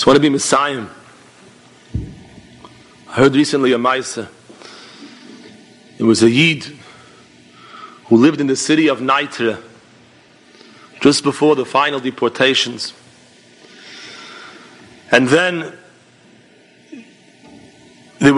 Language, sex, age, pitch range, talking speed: English, male, 40-59, 125-150 Hz, 85 wpm